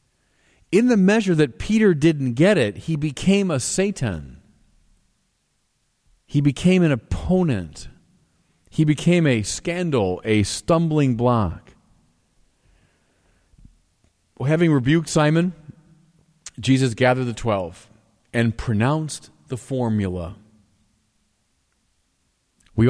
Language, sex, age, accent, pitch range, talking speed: English, male, 40-59, American, 105-155 Hz, 90 wpm